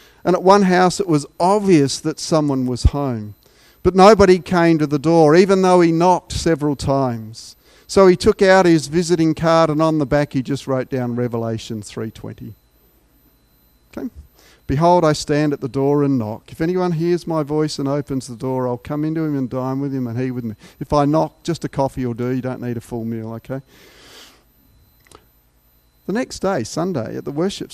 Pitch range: 100-150 Hz